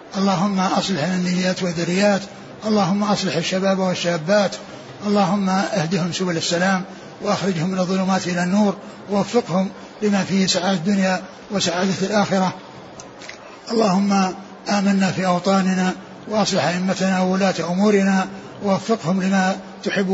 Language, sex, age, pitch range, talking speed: Arabic, male, 60-79, 185-200 Hz, 105 wpm